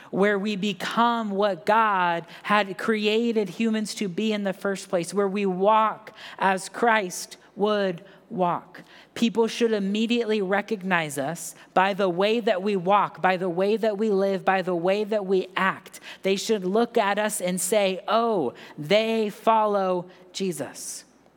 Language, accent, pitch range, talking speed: English, American, 180-215 Hz, 155 wpm